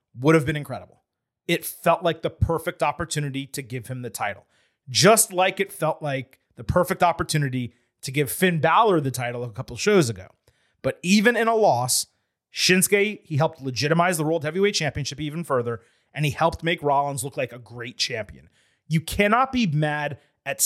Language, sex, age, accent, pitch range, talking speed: English, male, 30-49, American, 140-190 Hz, 185 wpm